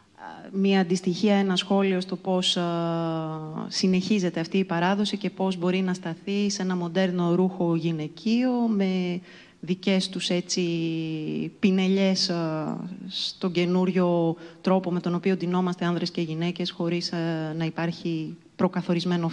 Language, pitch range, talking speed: Greek, 170-200 Hz, 130 wpm